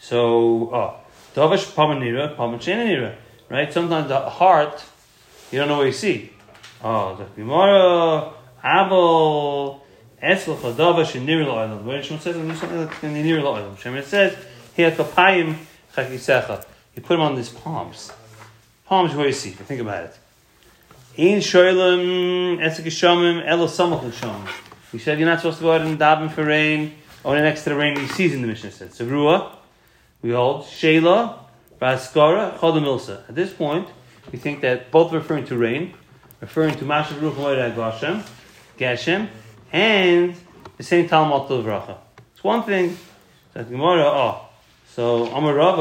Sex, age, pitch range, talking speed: male, 30-49, 125-165 Hz, 140 wpm